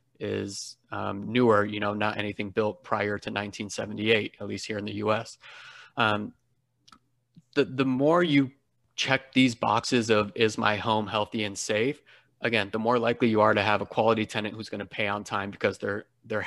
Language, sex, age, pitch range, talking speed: English, male, 30-49, 105-125 Hz, 195 wpm